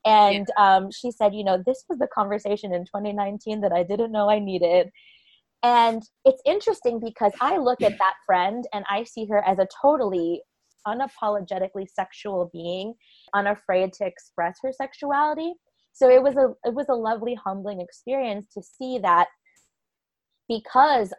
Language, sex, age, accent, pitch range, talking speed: English, female, 20-39, American, 175-230 Hz, 160 wpm